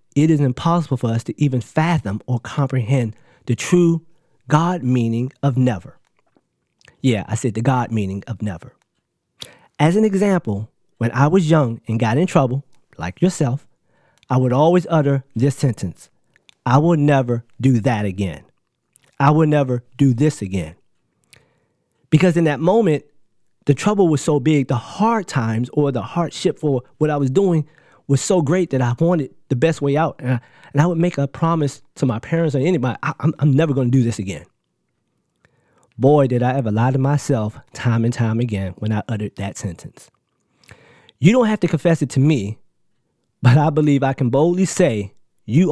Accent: American